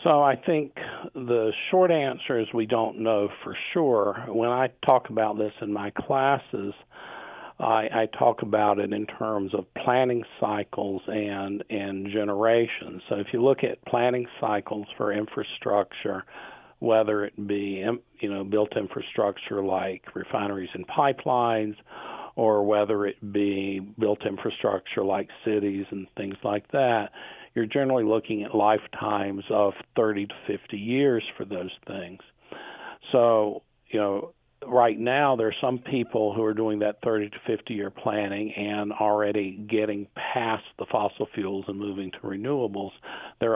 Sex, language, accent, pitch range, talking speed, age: male, English, American, 100-115 Hz, 150 wpm, 50-69